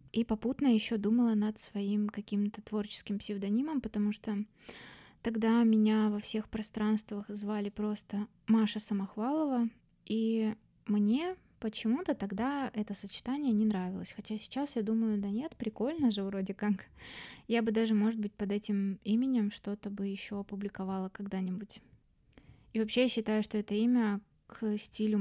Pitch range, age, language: 200-225 Hz, 20-39, Russian